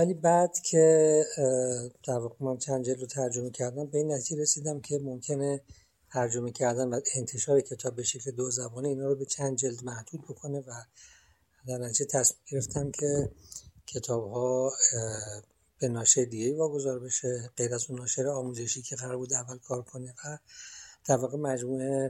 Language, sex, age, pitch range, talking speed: Persian, male, 60-79, 120-140 Hz, 160 wpm